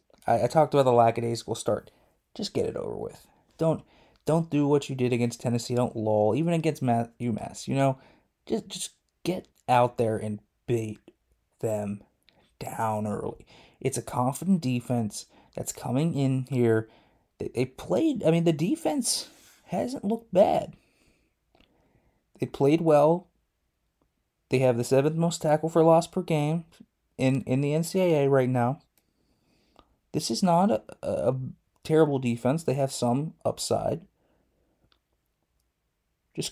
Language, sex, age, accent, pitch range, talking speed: English, male, 20-39, American, 120-160 Hz, 145 wpm